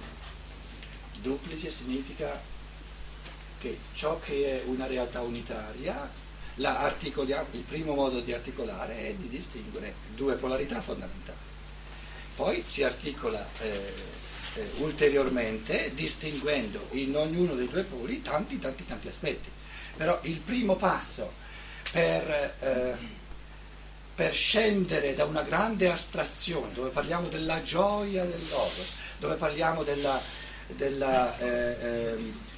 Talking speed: 110 wpm